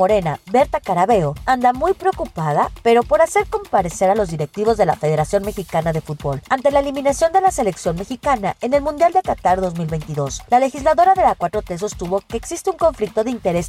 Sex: female